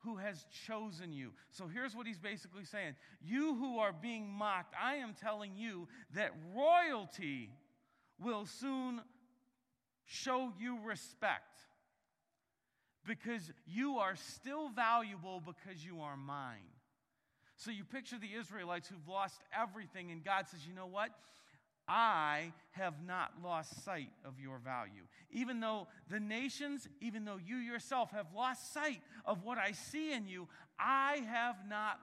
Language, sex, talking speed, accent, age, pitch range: English, male, 145 wpm, American, 40-59, 175-235 Hz